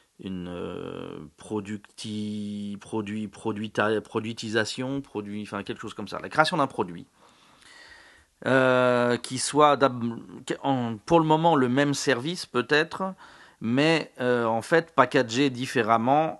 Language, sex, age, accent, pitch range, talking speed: French, male, 40-59, French, 120-155 Hz, 115 wpm